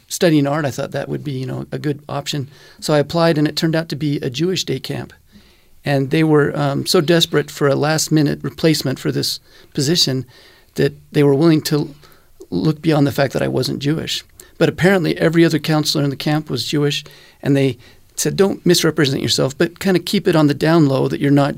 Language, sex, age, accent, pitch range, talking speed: English, male, 40-59, American, 145-165 Hz, 220 wpm